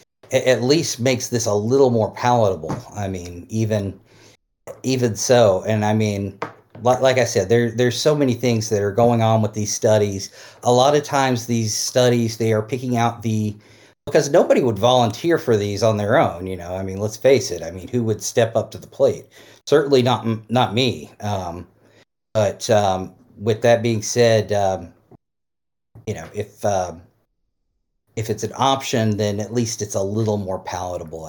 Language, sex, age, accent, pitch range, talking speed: English, male, 40-59, American, 105-125 Hz, 185 wpm